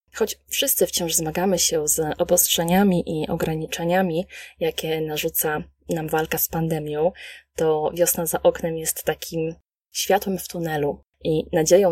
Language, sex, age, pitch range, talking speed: Polish, female, 20-39, 160-195 Hz, 130 wpm